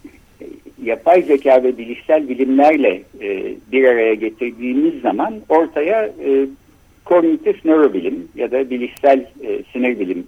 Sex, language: male, Turkish